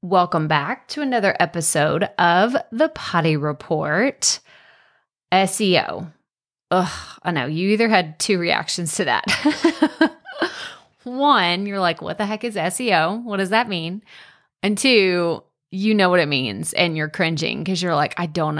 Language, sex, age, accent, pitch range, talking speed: English, female, 30-49, American, 165-205 Hz, 150 wpm